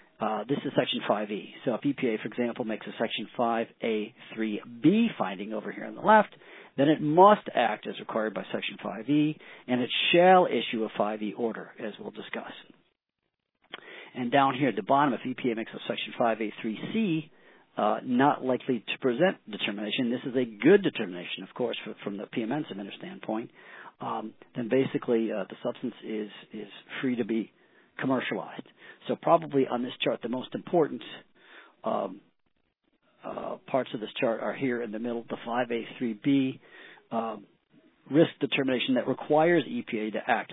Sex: male